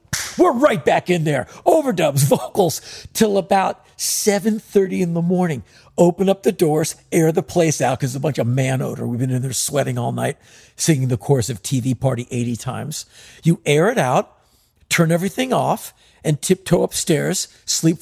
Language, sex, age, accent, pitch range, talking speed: English, male, 50-69, American, 130-175 Hz, 175 wpm